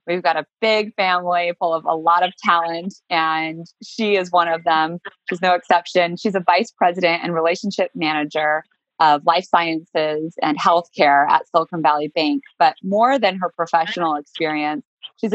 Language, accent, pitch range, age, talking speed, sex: English, American, 160-190 Hz, 20-39, 170 wpm, female